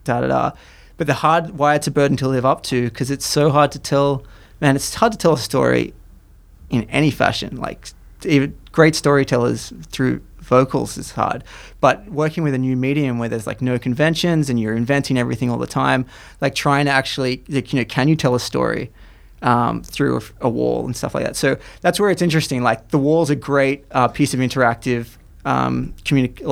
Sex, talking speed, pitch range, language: male, 210 wpm, 120-145 Hz, English